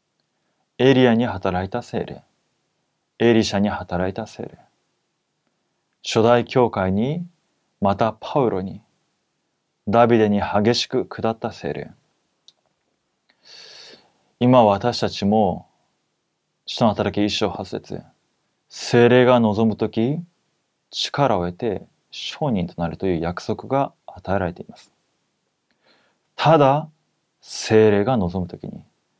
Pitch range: 100-130 Hz